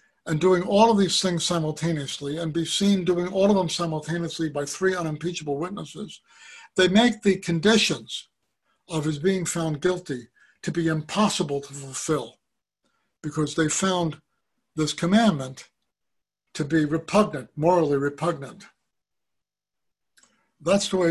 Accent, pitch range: American, 150-190 Hz